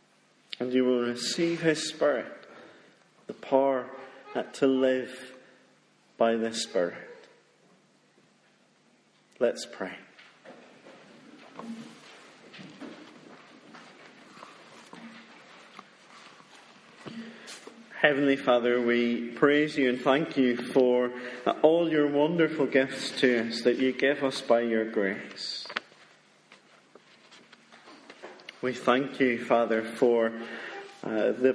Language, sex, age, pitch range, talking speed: English, male, 40-59, 115-135 Hz, 85 wpm